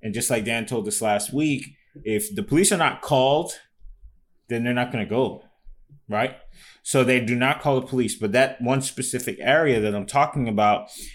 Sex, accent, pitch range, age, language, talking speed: male, American, 105-130 Hz, 20-39, English, 195 wpm